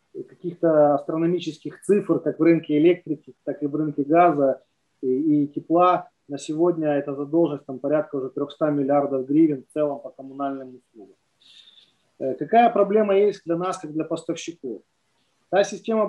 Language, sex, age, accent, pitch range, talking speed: Ukrainian, male, 30-49, native, 145-180 Hz, 145 wpm